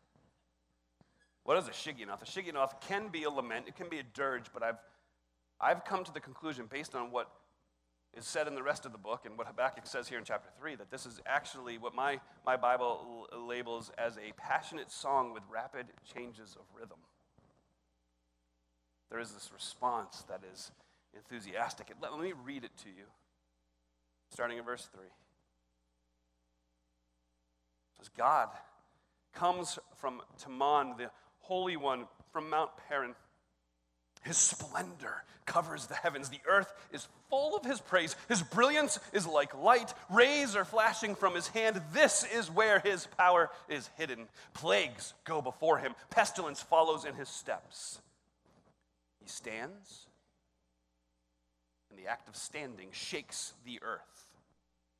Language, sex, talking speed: English, male, 155 wpm